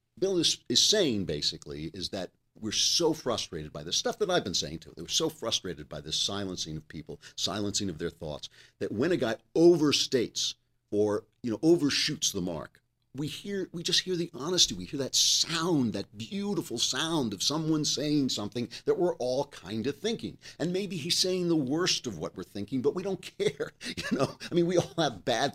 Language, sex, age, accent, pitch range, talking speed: English, male, 50-69, American, 95-145 Hz, 205 wpm